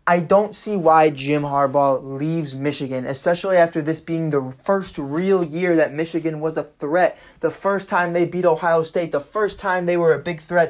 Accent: American